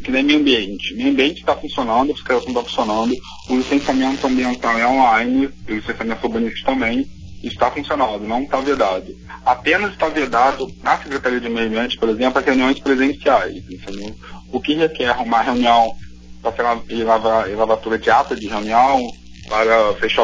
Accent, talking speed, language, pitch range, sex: Brazilian, 155 wpm, Portuguese, 110-135 Hz, male